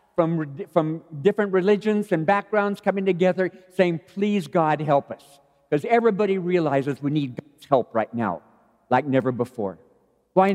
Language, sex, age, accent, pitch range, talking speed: English, male, 50-69, American, 145-195 Hz, 150 wpm